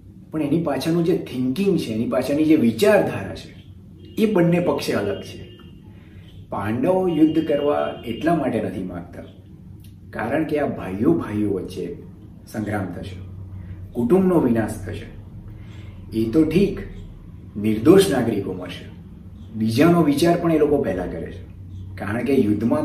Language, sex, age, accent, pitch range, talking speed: Gujarati, male, 30-49, native, 95-150 Hz, 135 wpm